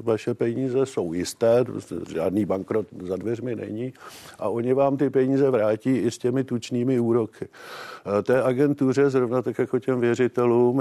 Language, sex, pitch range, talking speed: Czech, male, 115-130 Hz, 155 wpm